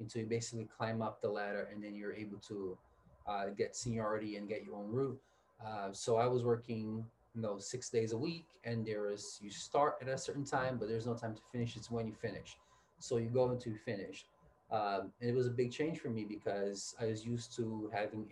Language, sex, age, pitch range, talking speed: English, male, 20-39, 105-120 Hz, 235 wpm